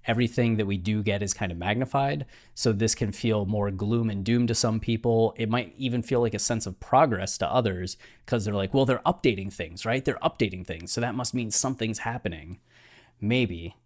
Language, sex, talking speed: English, male, 210 wpm